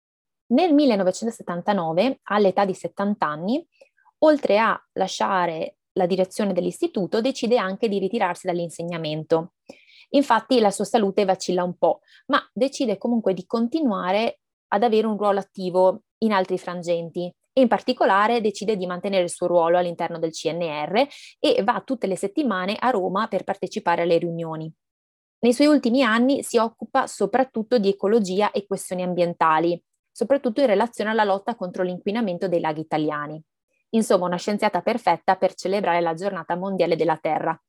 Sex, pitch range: female, 175-230 Hz